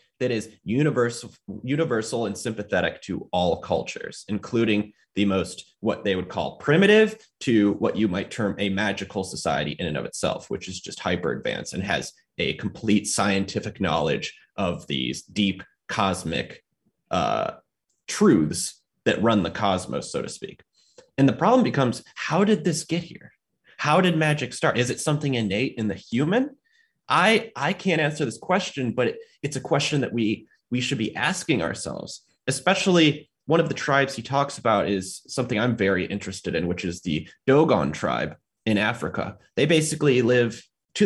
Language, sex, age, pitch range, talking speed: English, male, 30-49, 105-155 Hz, 170 wpm